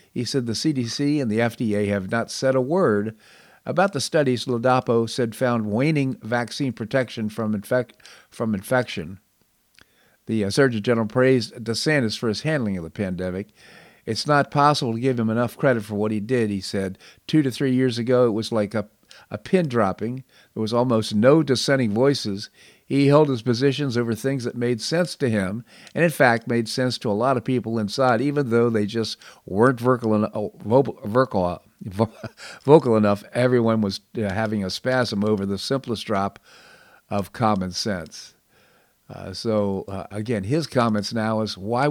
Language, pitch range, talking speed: English, 105-130 Hz, 175 wpm